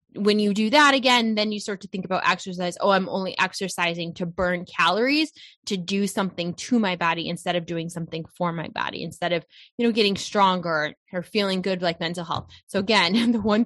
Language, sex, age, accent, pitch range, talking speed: English, female, 20-39, American, 180-230 Hz, 210 wpm